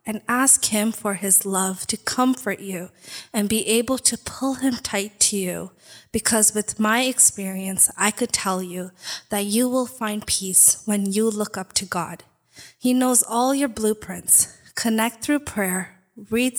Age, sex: 20-39, female